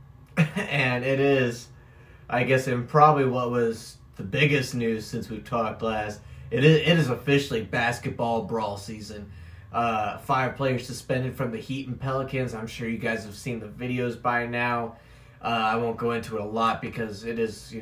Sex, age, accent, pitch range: male, 20-39, American, 110-130 Hz